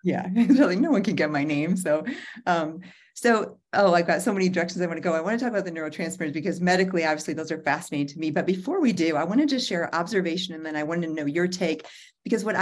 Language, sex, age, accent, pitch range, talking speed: English, female, 40-59, American, 150-175 Hz, 265 wpm